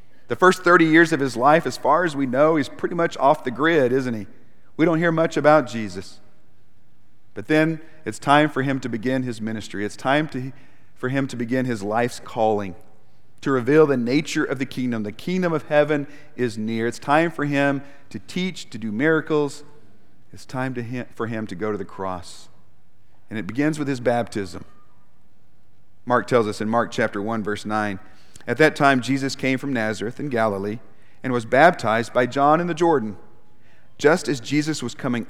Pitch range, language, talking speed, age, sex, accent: 105-140 Hz, English, 195 wpm, 40-59, male, American